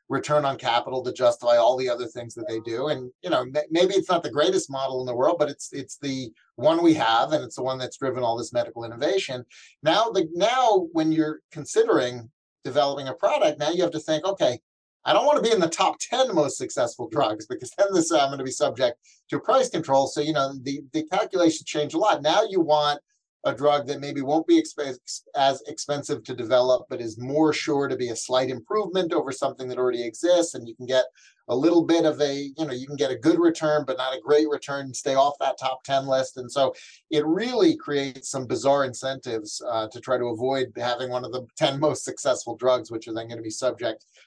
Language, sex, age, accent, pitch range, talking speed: English, male, 30-49, American, 125-160 Hz, 230 wpm